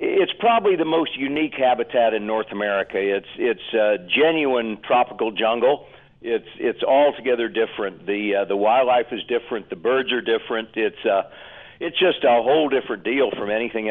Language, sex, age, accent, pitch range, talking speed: English, male, 60-79, American, 110-140 Hz, 170 wpm